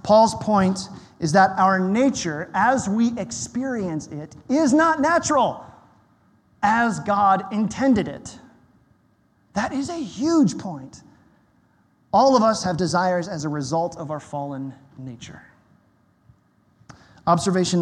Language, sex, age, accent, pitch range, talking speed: English, male, 30-49, American, 170-245 Hz, 120 wpm